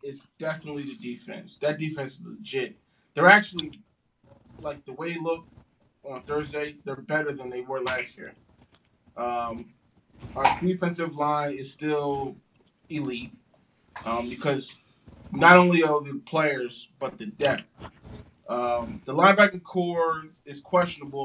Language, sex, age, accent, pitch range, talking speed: English, male, 20-39, American, 135-160 Hz, 135 wpm